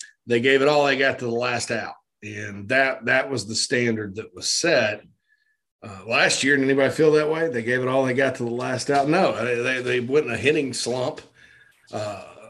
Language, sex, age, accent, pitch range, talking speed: English, male, 40-59, American, 115-145 Hz, 220 wpm